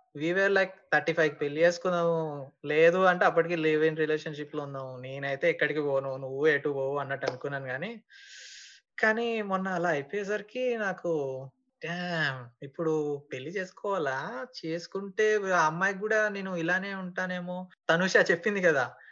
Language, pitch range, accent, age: Telugu, 155-200 Hz, native, 20-39